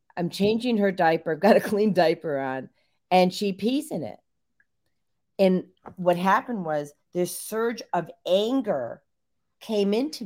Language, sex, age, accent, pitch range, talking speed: English, female, 40-59, American, 155-230 Hz, 145 wpm